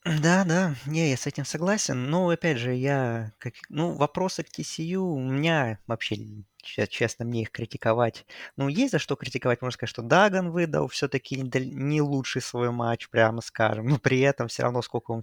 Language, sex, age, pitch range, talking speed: Russian, male, 20-39, 115-135 Hz, 175 wpm